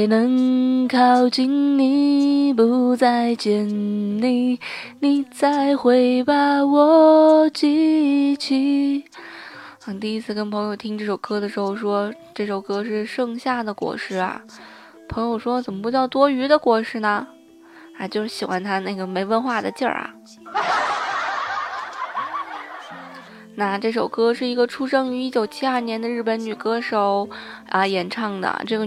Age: 20-39